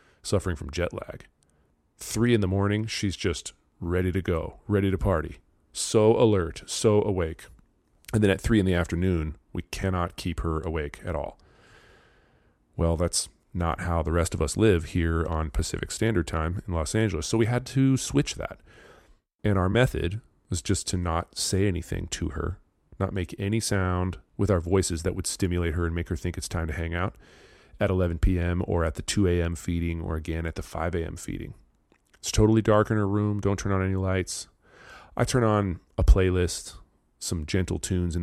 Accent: American